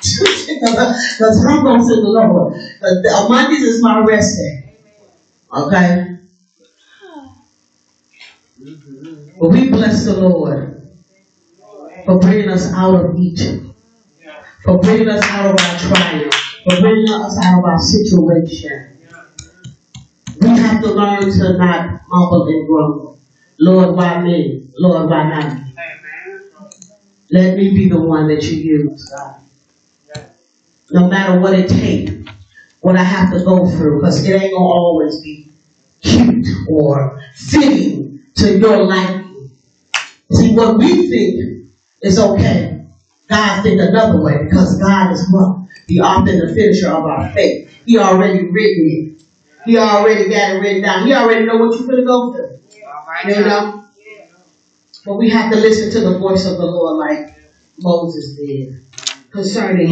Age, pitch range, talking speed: 30-49, 155-210 Hz, 140 wpm